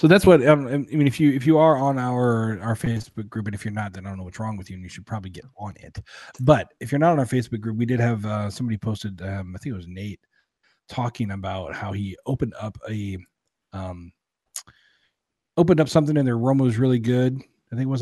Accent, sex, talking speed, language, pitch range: American, male, 255 wpm, English, 110-140 Hz